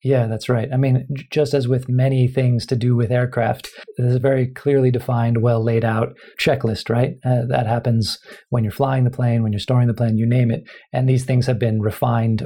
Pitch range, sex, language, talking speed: 115-135 Hz, male, English, 220 wpm